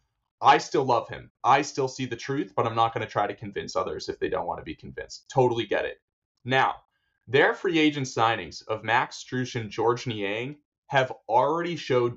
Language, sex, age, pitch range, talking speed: English, male, 20-39, 120-155 Hz, 205 wpm